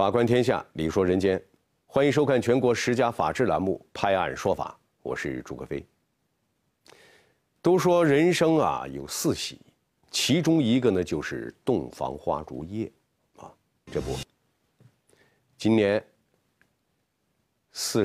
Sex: male